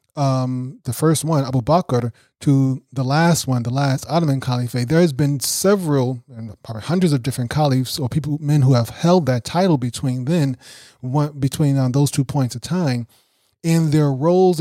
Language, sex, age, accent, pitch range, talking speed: English, male, 30-49, American, 125-165 Hz, 185 wpm